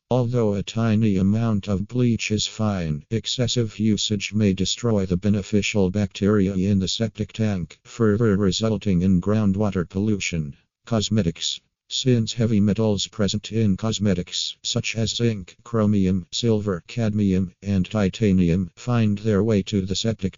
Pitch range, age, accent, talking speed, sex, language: 95-110 Hz, 50-69, American, 135 wpm, male, English